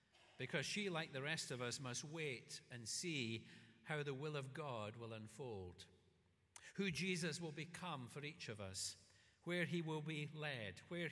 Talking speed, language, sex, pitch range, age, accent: 175 wpm, English, male, 110-165 Hz, 50-69, British